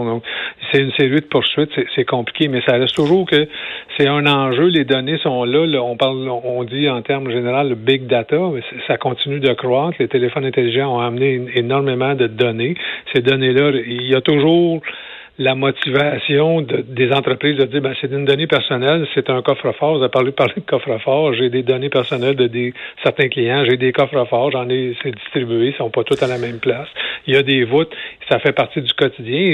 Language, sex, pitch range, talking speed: French, male, 125-140 Hz, 215 wpm